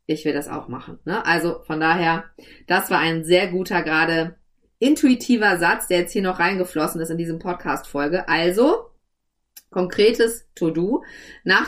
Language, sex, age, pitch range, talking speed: German, female, 30-49, 160-205 Hz, 150 wpm